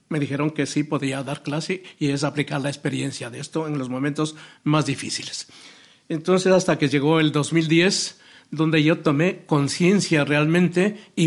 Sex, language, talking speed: male, Spanish, 165 wpm